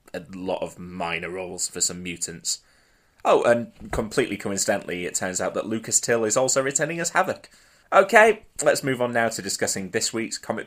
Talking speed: 185 wpm